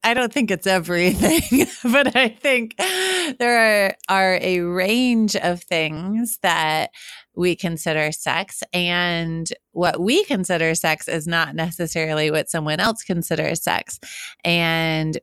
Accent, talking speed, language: American, 130 wpm, English